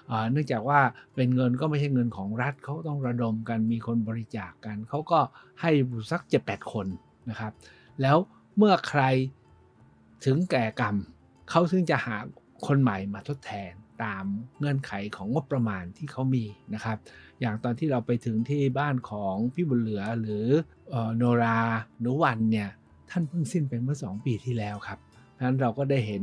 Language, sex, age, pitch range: Thai, male, 60-79, 115-150 Hz